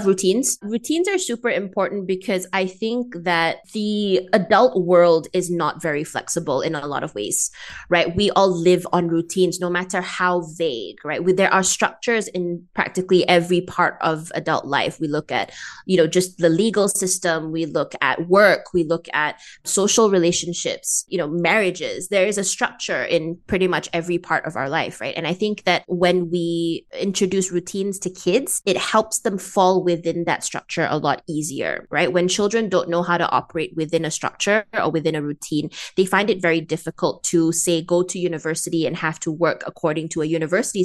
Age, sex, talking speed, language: 20-39, female, 190 wpm, English